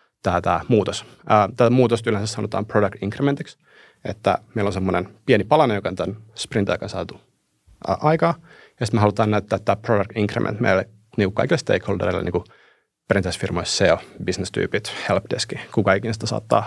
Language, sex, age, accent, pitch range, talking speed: Finnish, male, 30-49, native, 105-125 Hz, 165 wpm